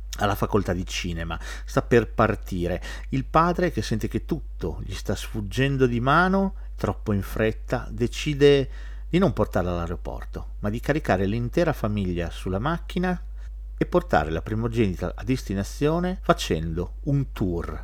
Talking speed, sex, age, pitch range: 140 wpm, male, 50-69, 90-130 Hz